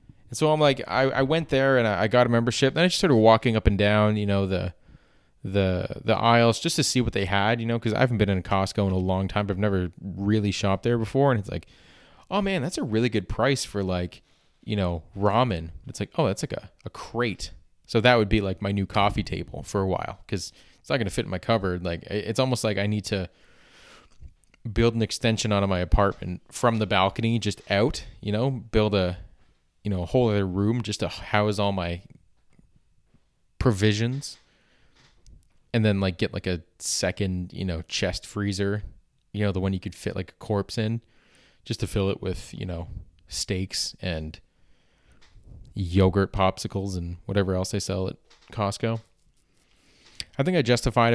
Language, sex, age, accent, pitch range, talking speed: English, male, 20-39, American, 95-120 Hz, 205 wpm